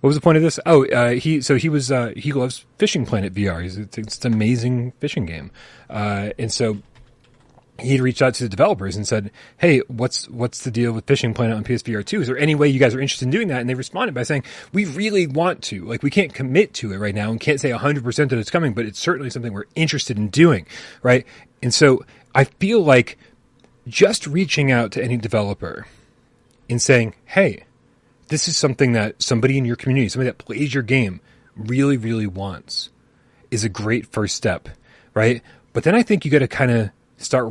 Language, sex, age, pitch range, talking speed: English, male, 30-49, 110-135 Hz, 220 wpm